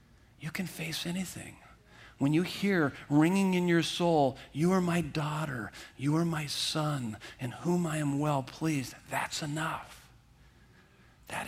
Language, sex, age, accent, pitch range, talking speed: English, male, 50-69, American, 130-155 Hz, 145 wpm